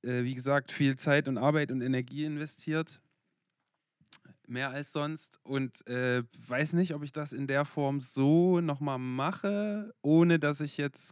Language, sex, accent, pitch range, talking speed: German, male, German, 125-160 Hz, 155 wpm